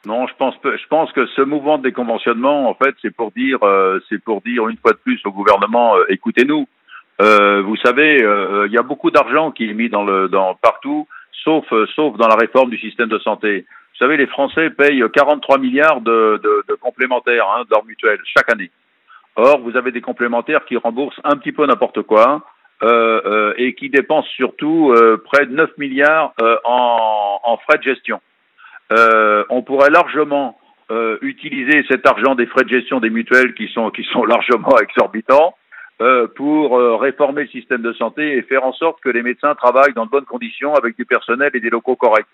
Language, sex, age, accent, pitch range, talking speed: French, male, 60-79, French, 115-150 Hz, 205 wpm